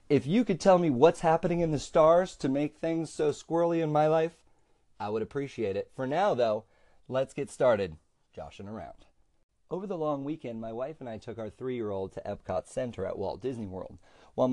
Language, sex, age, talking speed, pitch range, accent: English, male, 40-59, 200 wpm, 110-160 Hz, American